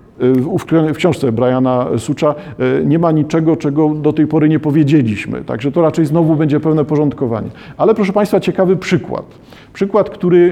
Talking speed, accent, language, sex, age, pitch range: 160 wpm, native, Polish, male, 50-69, 140-180 Hz